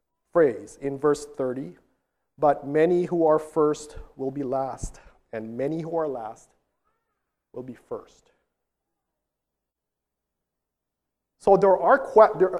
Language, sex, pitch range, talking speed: English, male, 145-230 Hz, 120 wpm